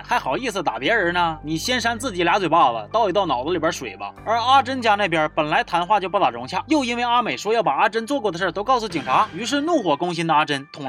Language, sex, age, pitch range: Chinese, male, 30-49, 165-245 Hz